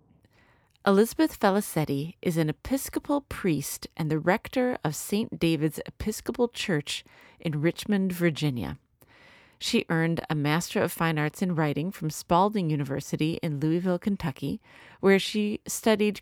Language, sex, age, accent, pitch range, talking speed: English, female, 40-59, American, 150-205 Hz, 130 wpm